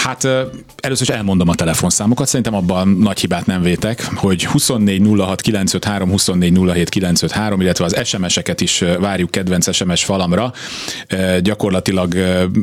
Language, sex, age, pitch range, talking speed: Hungarian, male, 30-49, 90-105 Hz, 130 wpm